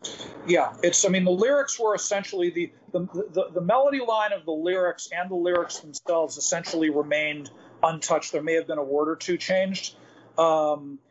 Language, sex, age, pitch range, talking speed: English, male, 40-59, 150-180 Hz, 185 wpm